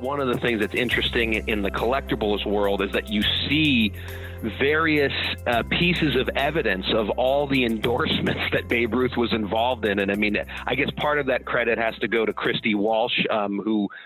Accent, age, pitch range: American, 40-59, 110-150 Hz